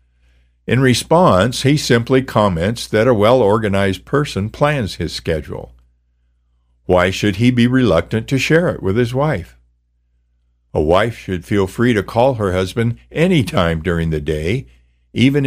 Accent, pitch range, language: American, 80-115 Hz, English